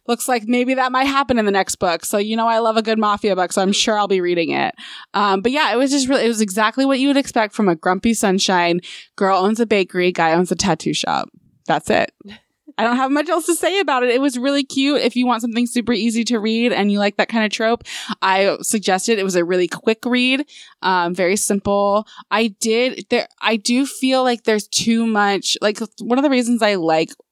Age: 20-39